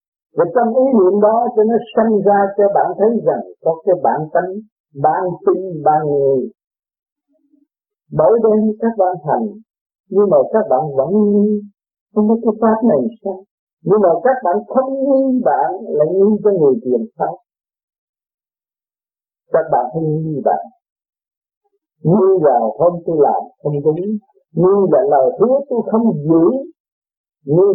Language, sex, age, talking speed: Vietnamese, male, 50-69, 155 wpm